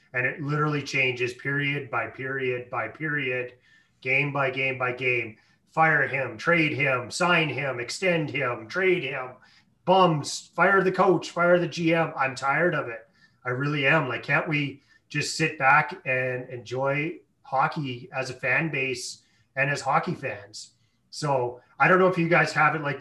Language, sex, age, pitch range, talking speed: English, male, 30-49, 125-155 Hz, 170 wpm